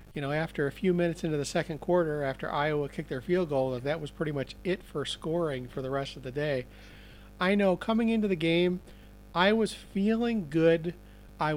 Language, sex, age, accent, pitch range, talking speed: English, male, 40-59, American, 135-165 Hz, 205 wpm